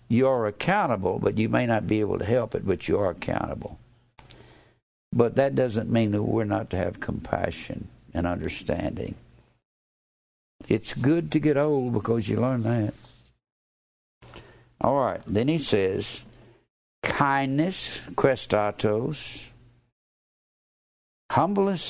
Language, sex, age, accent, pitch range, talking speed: English, male, 60-79, American, 110-140 Hz, 125 wpm